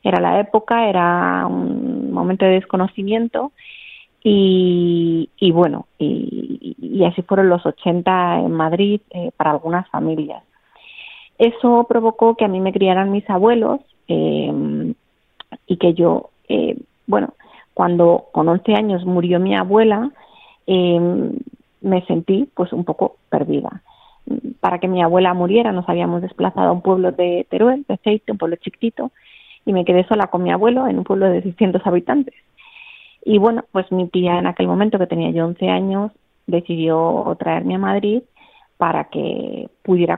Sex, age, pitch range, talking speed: female, 30-49, 175-230 Hz, 155 wpm